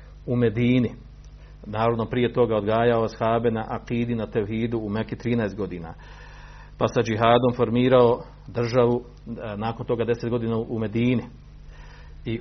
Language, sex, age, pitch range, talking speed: Croatian, male, 50-69, 105-125 Hz, 135 wpm